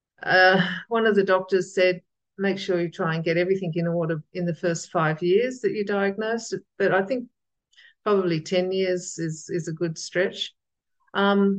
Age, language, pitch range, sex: 50-69, English, 170-210 Hz, female